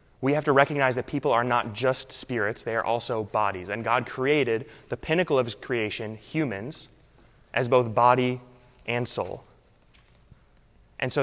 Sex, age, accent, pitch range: male, 20-39, American, 115-130 Hz